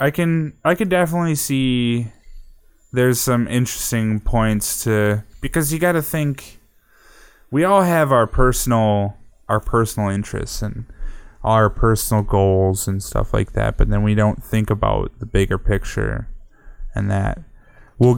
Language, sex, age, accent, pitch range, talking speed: English, male, 10-29, American, 100-115 Hz, 145 wpm